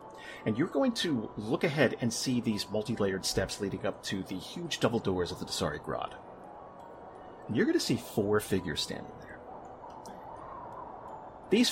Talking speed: 170 wpm